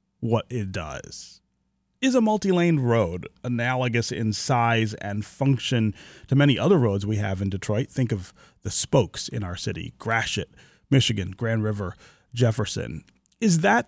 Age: 30-49